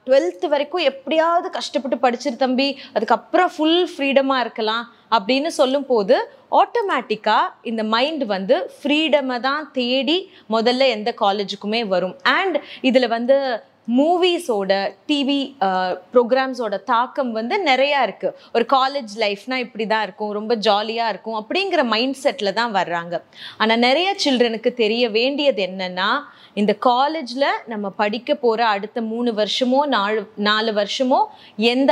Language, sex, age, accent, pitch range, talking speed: Tamil, female, 20-39, native, 220-285 Hz, 120 wpm